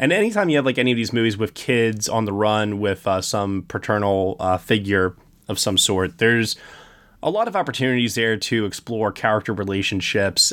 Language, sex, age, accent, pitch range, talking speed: English, male, 20-39, American, 100-130 Hz, 190 wpm